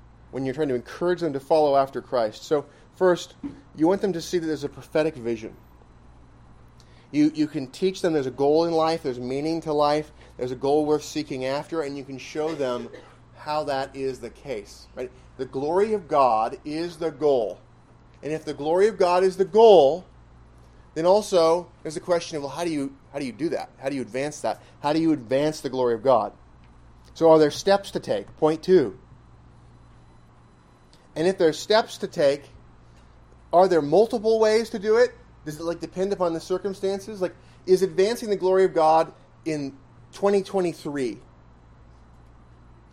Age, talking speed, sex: 30-49, 185 wpm, male